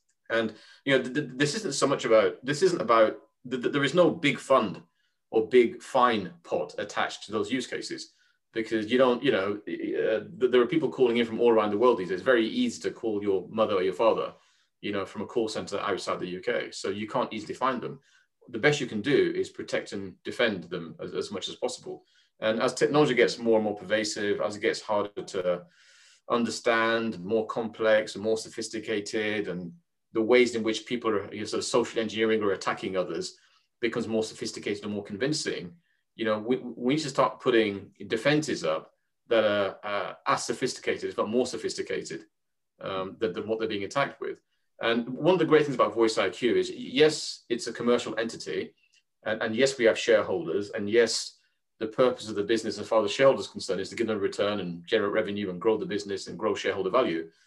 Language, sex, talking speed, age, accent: English, male, 210 wpm, 30-49, British